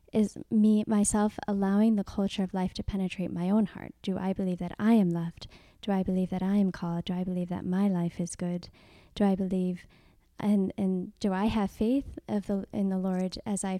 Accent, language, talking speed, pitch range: American, English, 220 wpm, 185-215 Hz